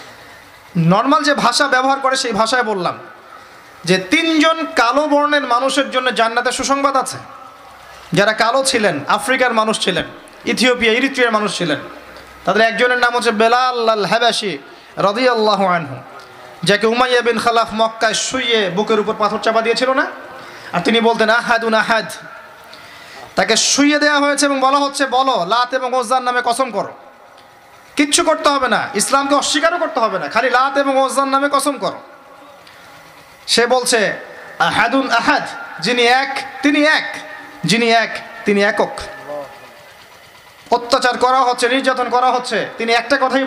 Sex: male